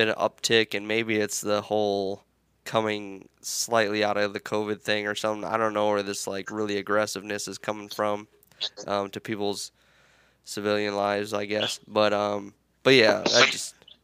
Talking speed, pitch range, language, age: 170 wpm, 100-110 Hz, English, 10-29